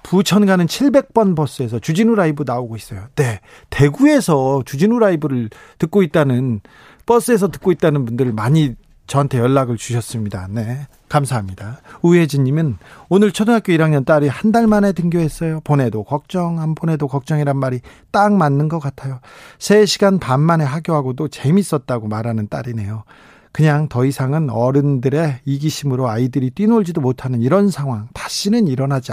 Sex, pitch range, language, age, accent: male, 130-180 Hz, Korean, 40-59, native